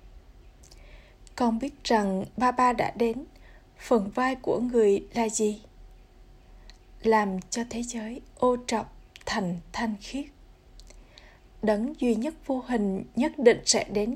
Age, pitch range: 20-39, 210-250 Hz